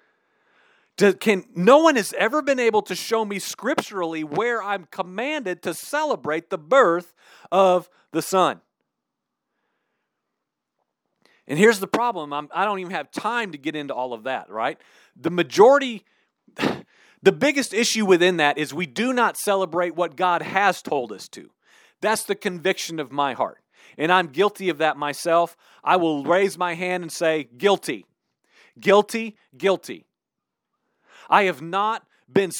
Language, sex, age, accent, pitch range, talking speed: English, male, 40-59, American, 170-230 Hz, 145 wpm